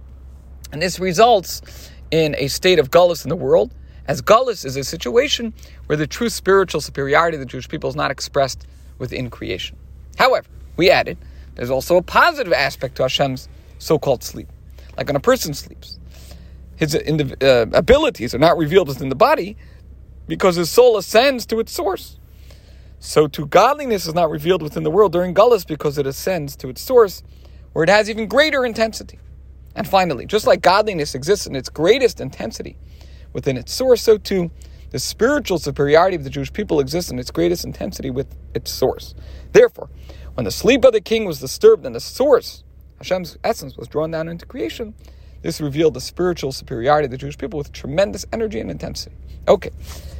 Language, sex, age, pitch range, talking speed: English, male, 40-59, 125-205 Hz, 180 wpm